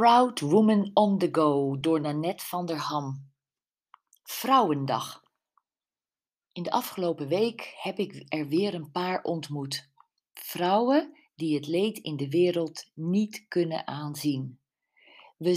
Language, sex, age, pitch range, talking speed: Dutch, female, 40-59, 150-195 Hz, 125 wpm